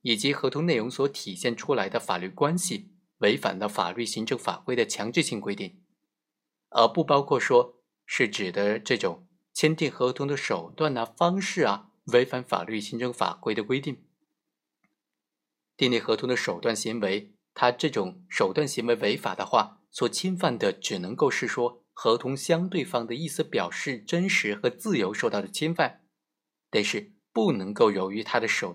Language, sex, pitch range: Chinese, male, 115-165 Hz